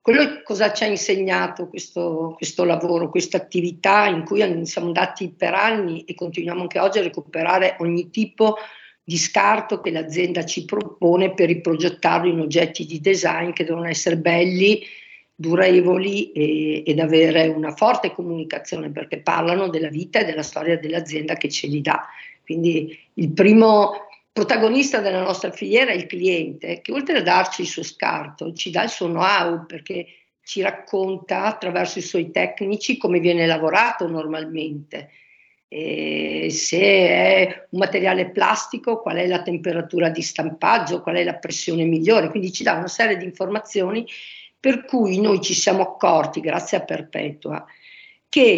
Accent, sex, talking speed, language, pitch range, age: native, female, 150 wpm, Italian, 165-200 Hz, 50-69